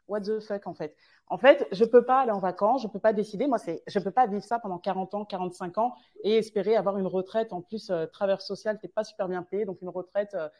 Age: 30-49